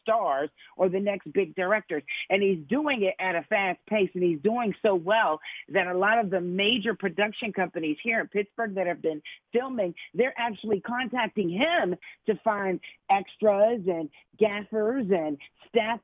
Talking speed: 170 wpm